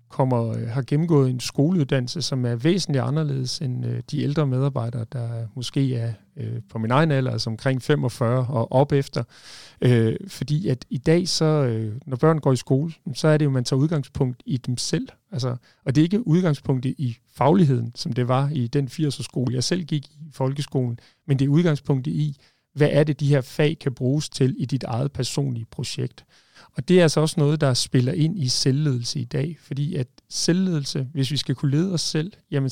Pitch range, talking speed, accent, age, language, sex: 125-155 Hz, 205 wpm, native, 40-59, Danish, male